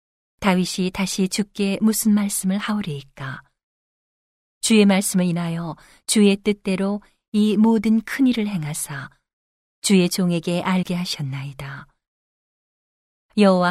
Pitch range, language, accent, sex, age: 170-210 Hz, Korean, native, female, 40-59